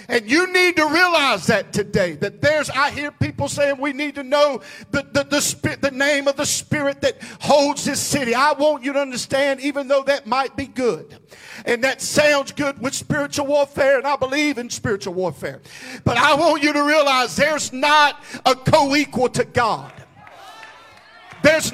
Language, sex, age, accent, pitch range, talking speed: English, male, 50-69, American, 270-305 Hz, 185 wpm